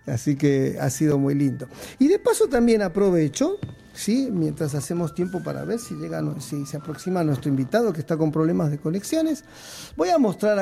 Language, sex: Spanish, male